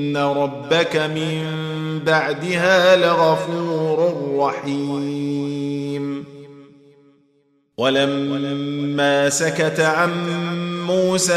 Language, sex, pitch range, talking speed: Arabic, male, 140-170 Hz, 55 wpm